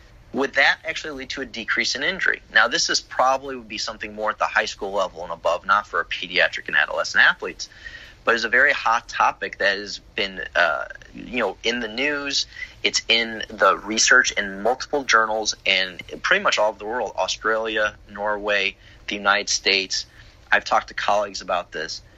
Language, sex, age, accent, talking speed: English, male, 30-49, American, 195 wpm